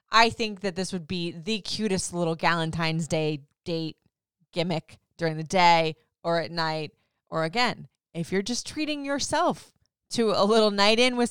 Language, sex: English, female